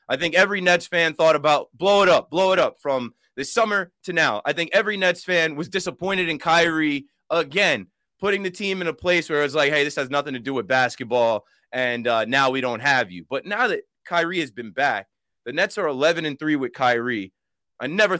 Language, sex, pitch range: English, male, 140-190 Hz